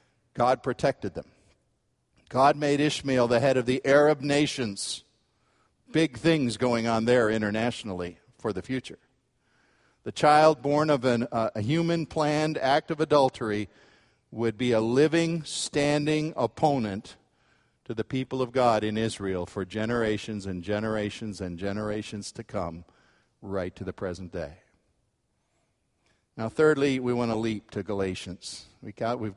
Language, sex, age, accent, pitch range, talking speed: English, male, 50-69, American, 110-150 Hz, 135 wpm